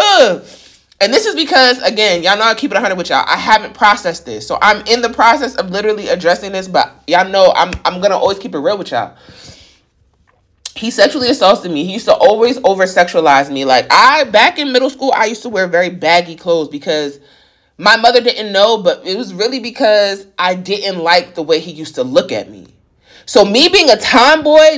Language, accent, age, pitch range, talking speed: English, American, 20-39, 180-255 Hz, 215 wpm